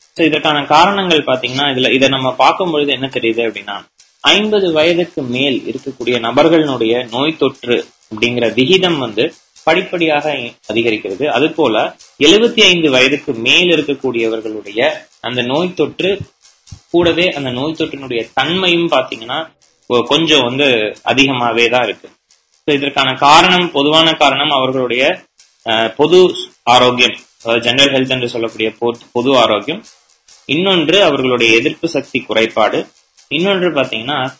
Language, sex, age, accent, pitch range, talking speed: Tamil, male, 20-39, native, 115-155 Hz, 100 wpm